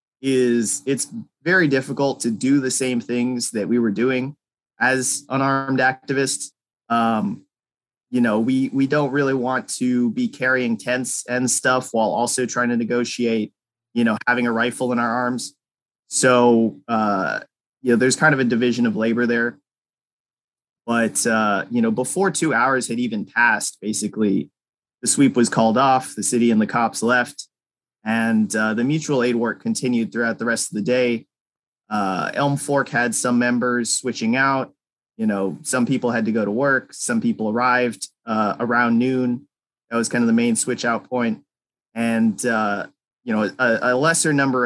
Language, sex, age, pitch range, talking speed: English, male, 30-49, 115-130 Hz, 175 wpm